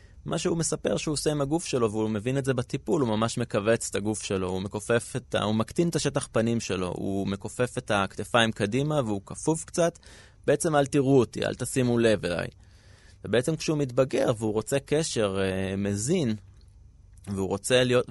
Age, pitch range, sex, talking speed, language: 20-39, 100-140 Hz, male, 170 wpm, Hebrew